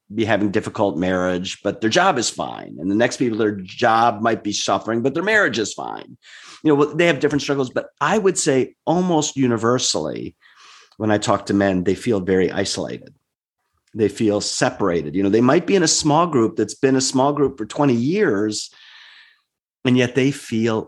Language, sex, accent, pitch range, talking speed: English, male, American, 105-145 Hz, 195 wpm